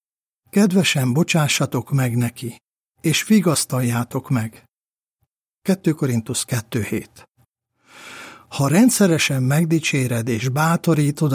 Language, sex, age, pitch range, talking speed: Hungarian, male, 60-79, 120-160 Hz, 80 wpm